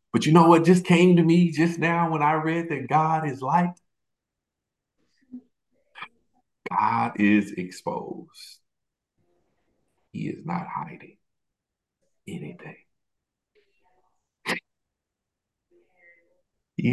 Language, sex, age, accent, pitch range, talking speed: English, male, 50-69, American, 135-180 Hz, 90 wpm